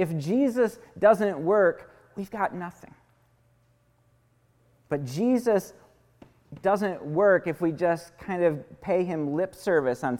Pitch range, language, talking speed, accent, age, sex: 140-190 Hz, English, 125 wpm, American, 40-59, male